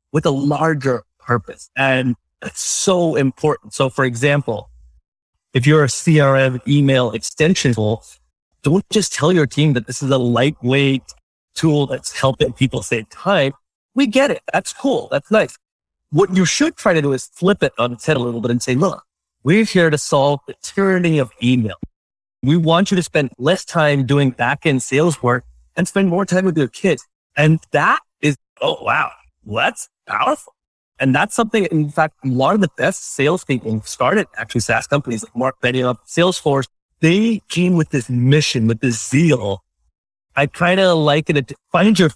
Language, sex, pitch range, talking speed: English, male, 120-155 Hz, 180 wpm